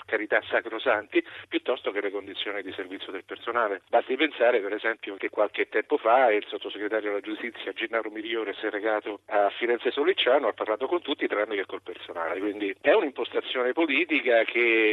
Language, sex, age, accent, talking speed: Italian, male, 50-69, native, 175 wpm